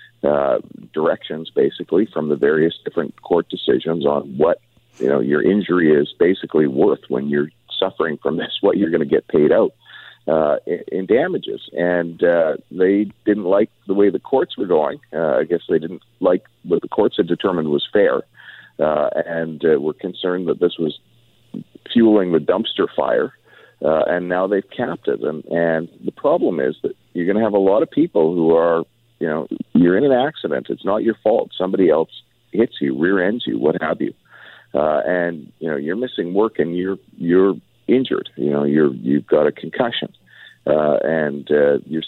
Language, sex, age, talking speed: English, male, 50-69, 190 wpm